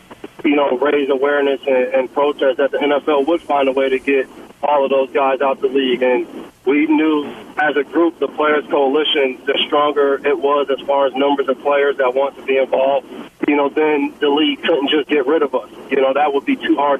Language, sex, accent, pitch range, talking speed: English, male, American, 135-145 Hz, 220 wpm